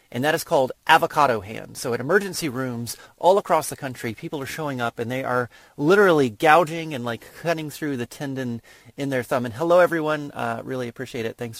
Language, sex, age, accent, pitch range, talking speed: English, male, 30-49, American, 115-155 Hz, 205 wpm